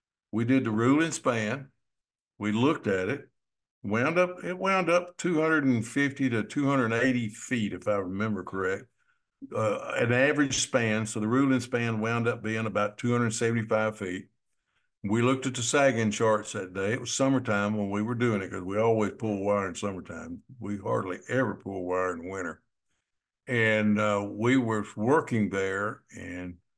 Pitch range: 100-125 Hz